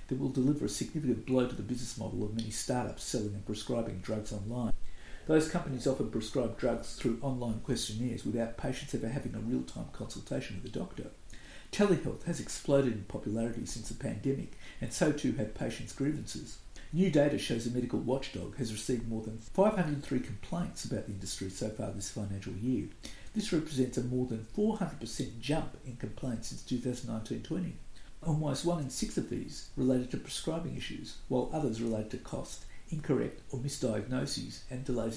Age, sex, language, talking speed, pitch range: 50-69, male, English, 170 wpm, 115-140 Hz